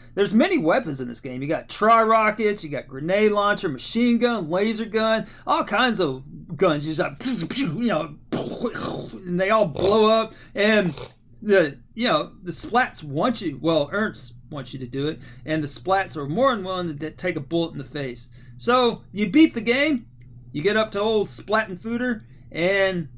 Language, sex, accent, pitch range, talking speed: English, male, American, 160-250 Hz, 190 wpm